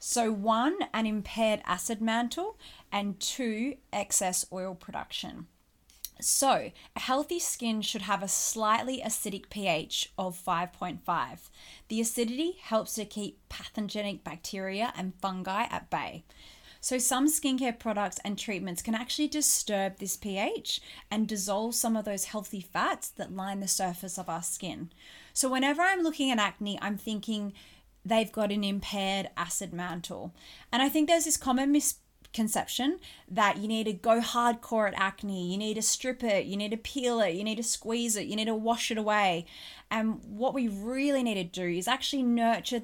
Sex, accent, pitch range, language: female, Australian, 190-240 Hz, English